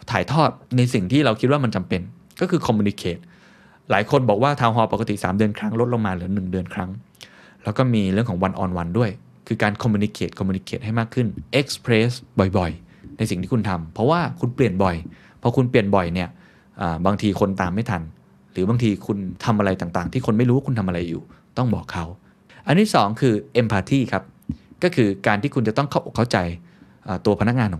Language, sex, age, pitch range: Thai, male, 20-39, 95-130 Hz